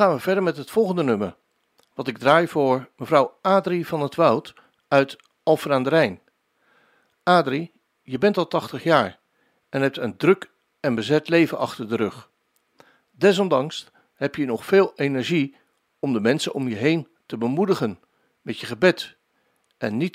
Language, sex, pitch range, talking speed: Dutch, male, 140-185 Hz, 165 wpm